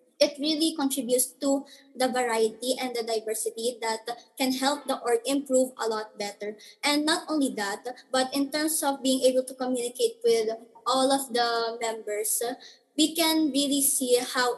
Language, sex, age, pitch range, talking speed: English, male, 20-39, 230-270 Hz, 165 wpm